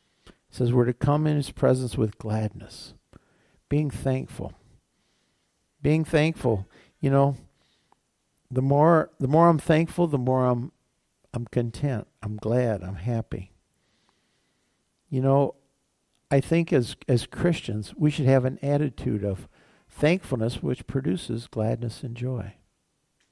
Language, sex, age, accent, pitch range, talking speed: English, male, 60-79, American, 115-150 Hz, 125 wpm